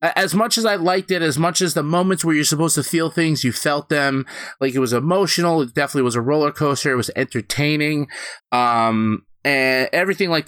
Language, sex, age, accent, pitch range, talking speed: English, male, 30-49, American, 135-170 Hz, 210 wpm